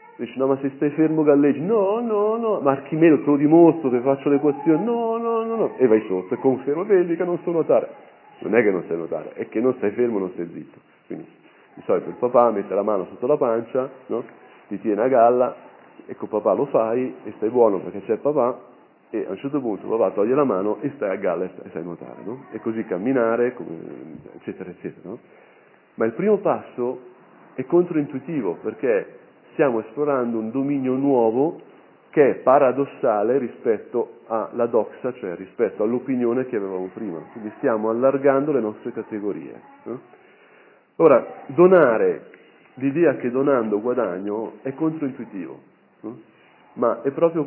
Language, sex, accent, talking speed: Italian, male, native, 170 wpm